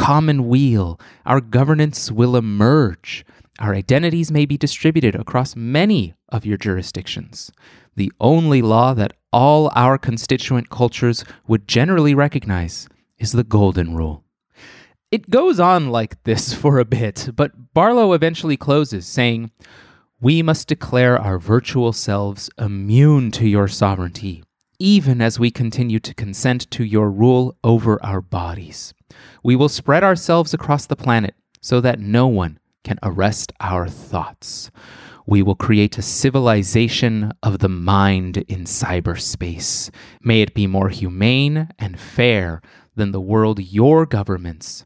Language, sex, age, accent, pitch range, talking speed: English, male, 30-49, American, 100-140 Hz, 135 wpm